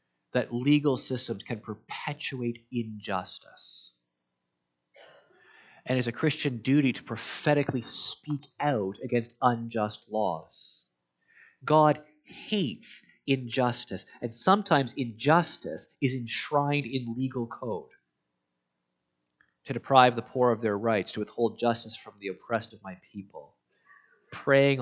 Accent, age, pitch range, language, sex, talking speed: American, 30-49, 105-145 Hz, English, male, 110 wpm